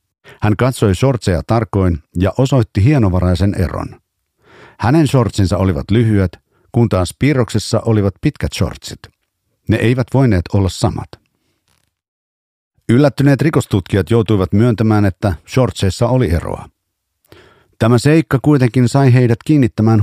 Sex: male